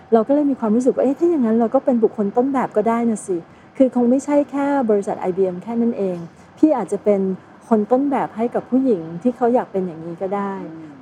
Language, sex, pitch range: Thai, female, 185-240 Hz